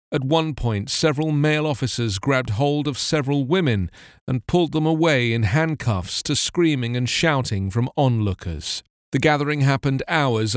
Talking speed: 155 wpm